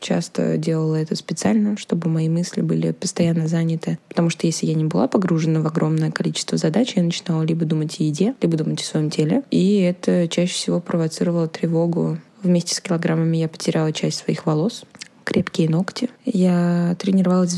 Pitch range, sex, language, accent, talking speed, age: 165-185 Hz, female, Russian, native, 170 wpm, 20-39